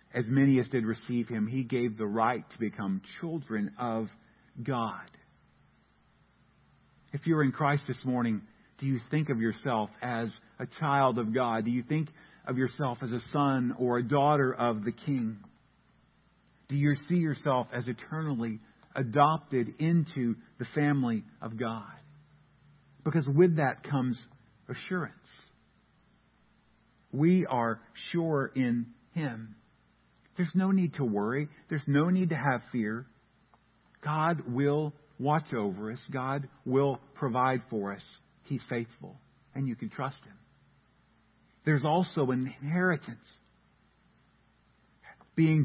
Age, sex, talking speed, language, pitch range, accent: 50-69, male, 130 wpm, English, 120-150 Hz, American